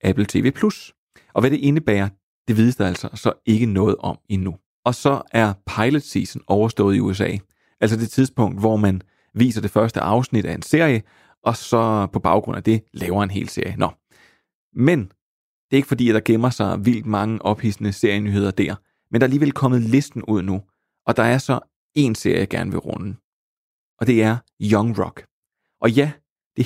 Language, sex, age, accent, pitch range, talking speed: Danish, male, 30-49, native, 100-125 Hz, 195 wpm